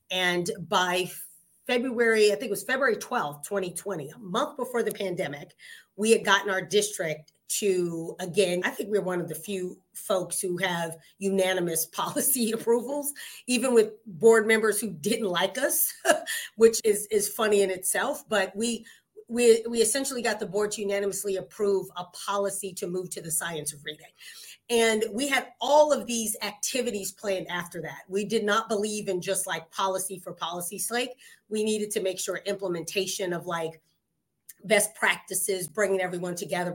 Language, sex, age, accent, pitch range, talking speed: English, female, 30-49, American, 185-225 Hz, 170 wpm